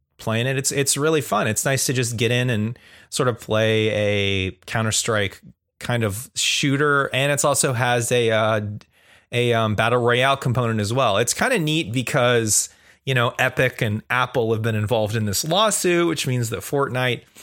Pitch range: 100-135 Hz